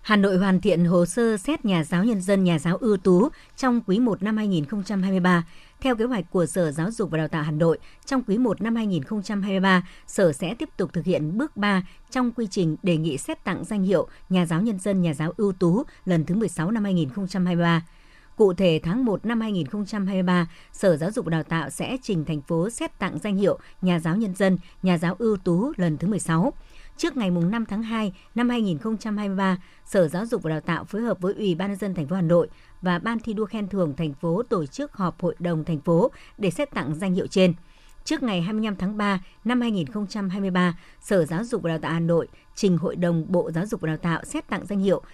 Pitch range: 170-215 Hz